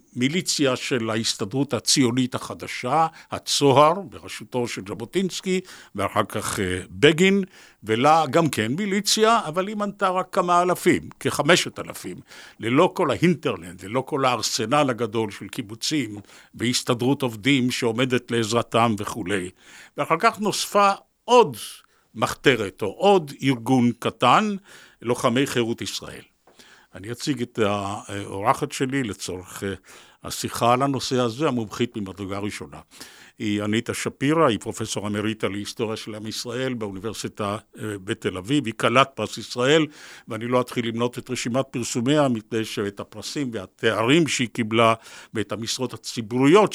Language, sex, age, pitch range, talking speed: Hebrew, male, 60-79, 110-145 Hz, 125 wpm